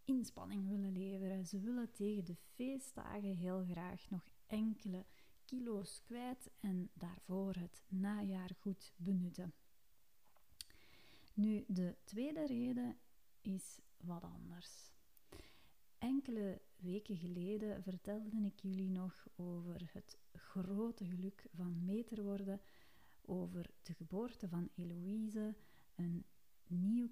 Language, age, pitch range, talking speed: Dutch, 30-49, 180-210 Hz, 105 wpm